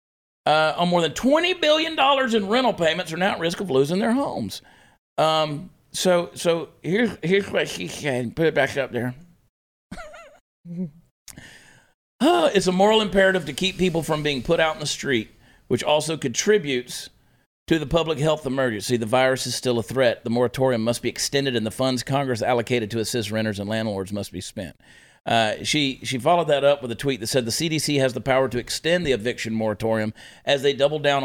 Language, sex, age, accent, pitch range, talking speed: English, male, 50-69, American, 125-165 Hz, 200 wpm